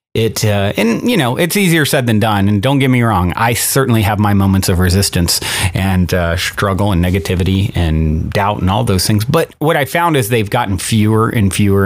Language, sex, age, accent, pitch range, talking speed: English, male, 30-49, American, 90-120 Hz, 220 wpm